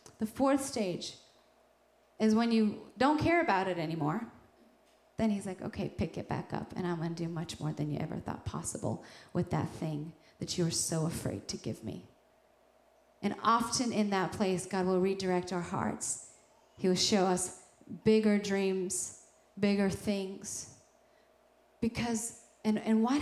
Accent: American